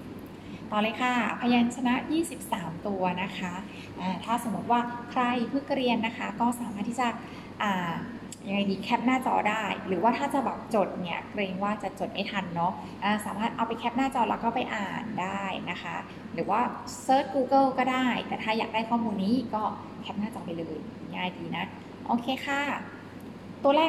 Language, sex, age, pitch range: Thai, female, 20-39, 210-260 Hz